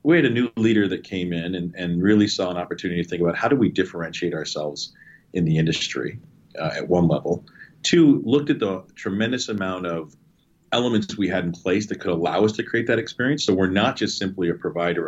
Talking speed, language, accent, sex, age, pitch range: 225 wpm, English, American, male, 40-59, 85-105 Hz